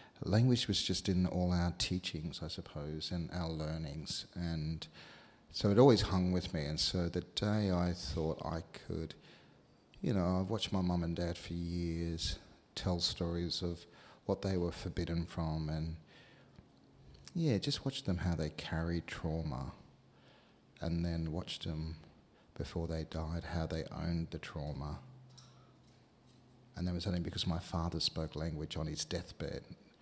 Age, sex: 40-59, male